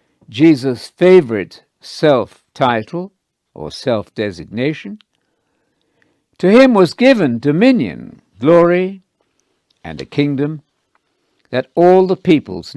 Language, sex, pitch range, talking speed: English, male, 115-165 Hz, 85 wpm